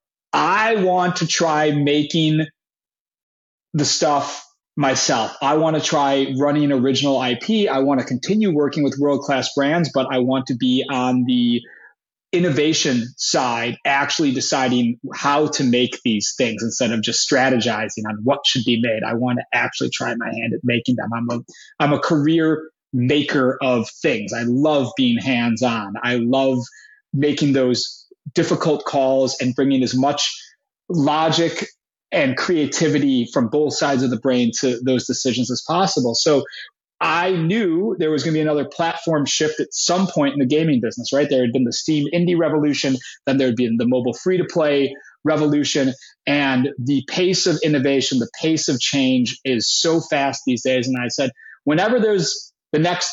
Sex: male